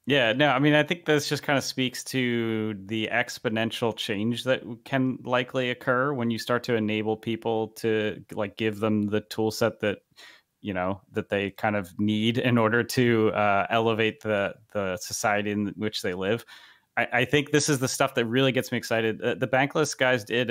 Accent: American